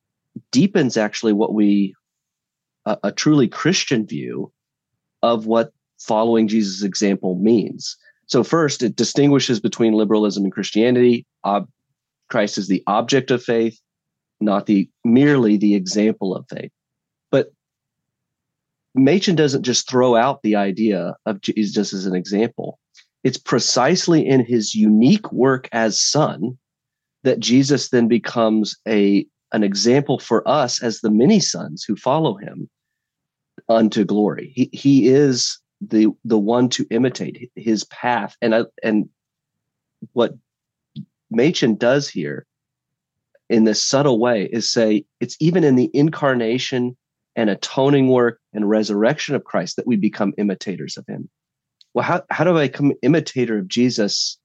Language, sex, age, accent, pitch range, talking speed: English, male, 30-49, American, 105-135 Hz, 140 wpm